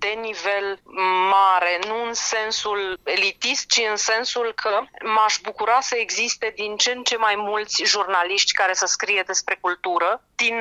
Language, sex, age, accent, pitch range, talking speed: English, female, 30-49, Romanian, 190-235 Hz, 160 wpm